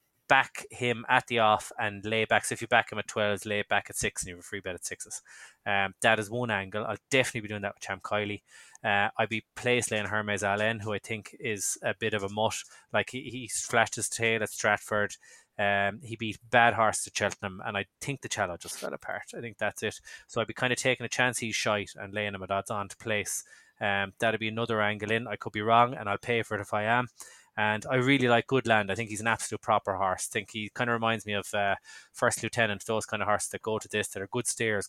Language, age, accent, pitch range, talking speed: English, 20-39, Irish, 100-115 Hz, 265 wpm